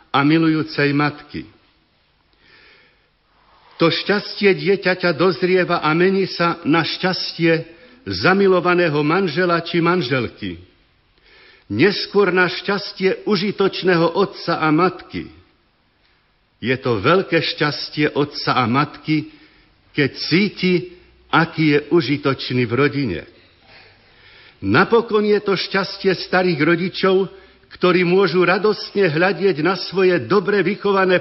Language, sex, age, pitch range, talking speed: Slovak, male, 60-79, 150-190 Hz, 100 wpm